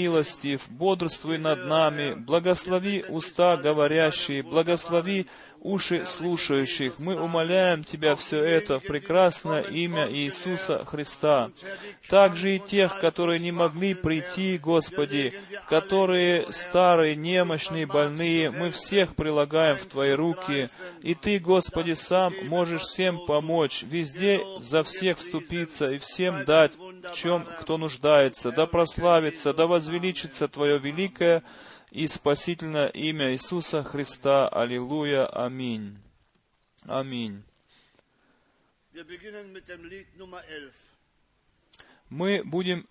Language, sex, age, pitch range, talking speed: Russian, male, 30-49, 150-180 Hz, 100 wpm